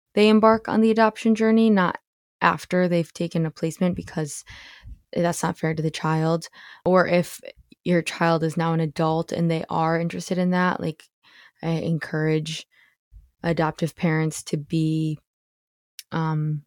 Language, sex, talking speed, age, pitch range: English, female, 150 wpm, 20-39, 160-175 Hz